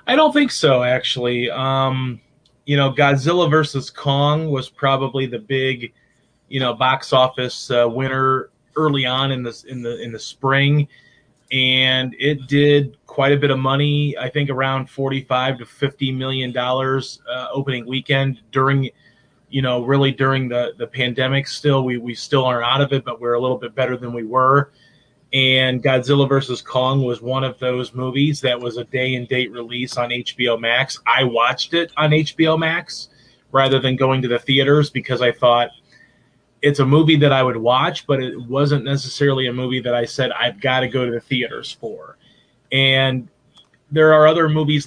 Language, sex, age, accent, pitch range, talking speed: English, male, 30-49, American, 125-140 Hz, 185 wpm